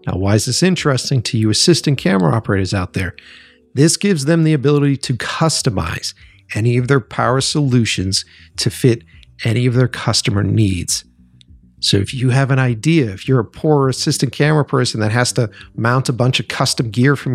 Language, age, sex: English, 40-59, male